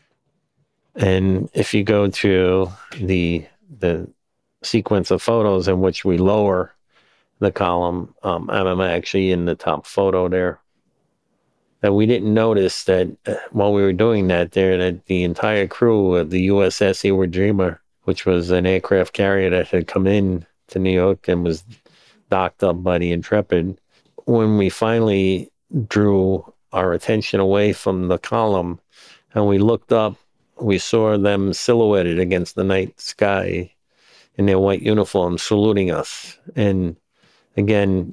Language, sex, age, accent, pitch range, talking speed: English, male, 50-69, American, 90-105 Hz, 145 wpm